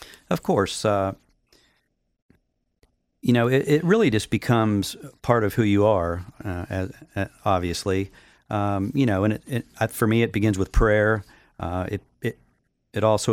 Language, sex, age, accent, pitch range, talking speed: English, male, 40-59, American, 90-110 Hz, 145 wpm